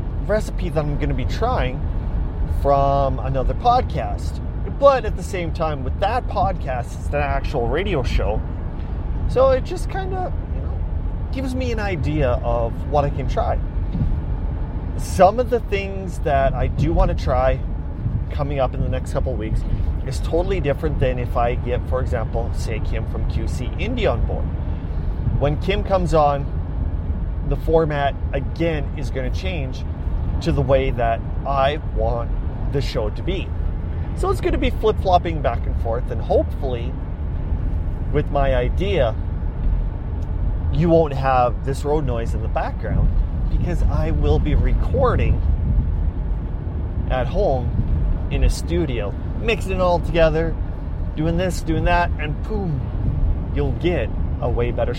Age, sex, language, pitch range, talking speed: 30-49, male, English, 80-100 Hz, 155 wpm